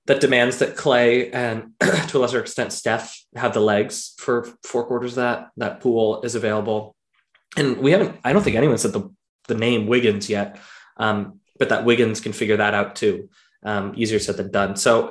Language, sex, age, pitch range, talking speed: English, male, 20-39, 105-120 Hz, 200 wpm